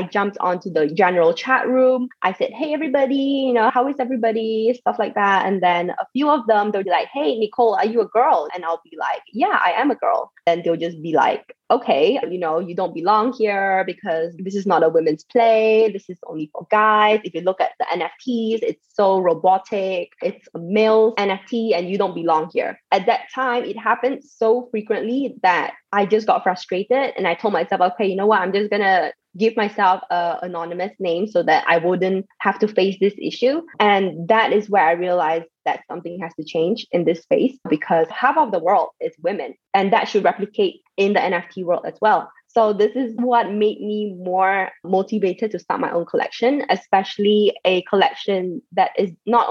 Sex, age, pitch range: female, 20-39, 180-230 Hz